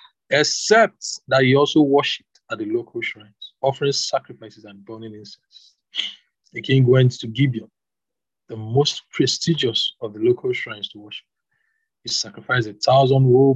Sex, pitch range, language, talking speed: male, 115-150 Hz, English, 140 wpm